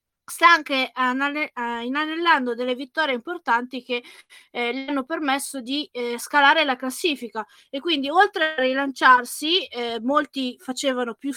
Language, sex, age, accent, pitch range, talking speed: Italian, female, 20-39, native, 245-300 Hz, 130 wpm